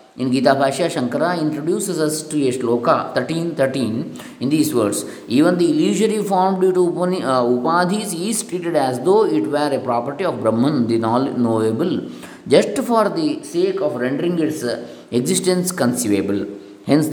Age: 20-39